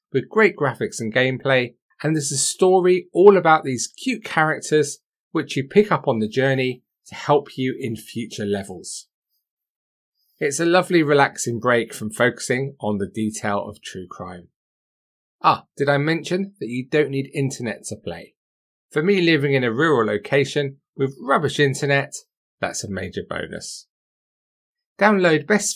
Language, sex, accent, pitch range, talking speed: English, male, British, 115-165 Hz, 155 wpm